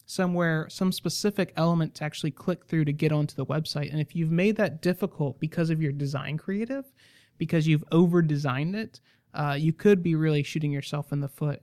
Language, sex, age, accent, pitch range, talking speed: English, male, 30-49, American, 150-190 Hz, 195 wpm